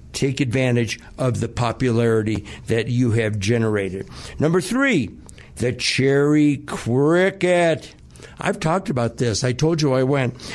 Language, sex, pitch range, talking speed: English, male, 120-160 Hz, 130 wpm